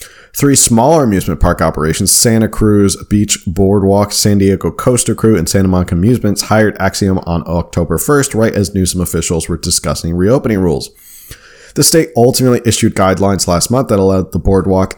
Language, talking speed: English, 165 wpm